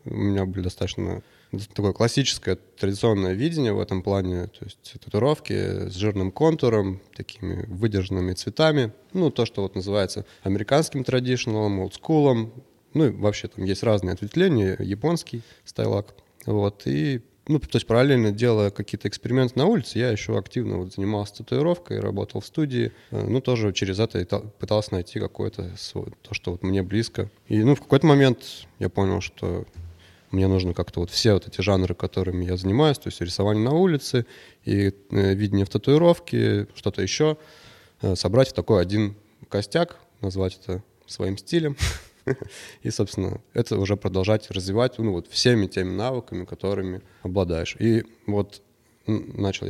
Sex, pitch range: male, 95-125 Hz